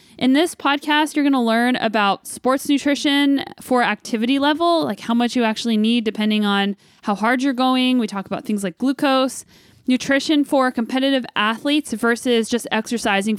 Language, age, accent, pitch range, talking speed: English, 10-29, American, 220-275 Hz, 170 wpm